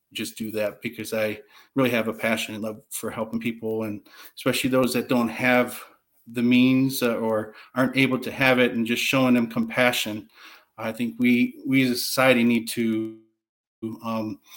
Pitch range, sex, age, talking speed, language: 115-130 Hz, male, 40-59, 175 wpm, English